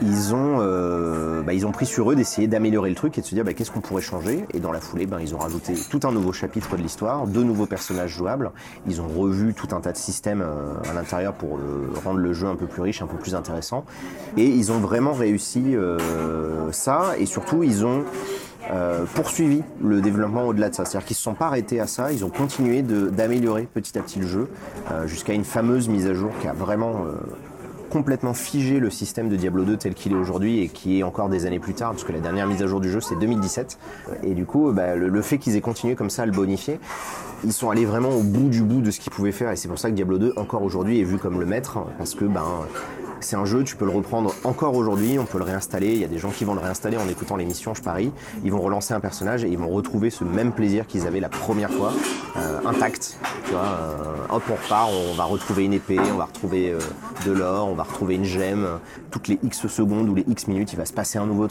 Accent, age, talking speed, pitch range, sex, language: French, 30-49, 260 wpm, 90-115 Hz, male, French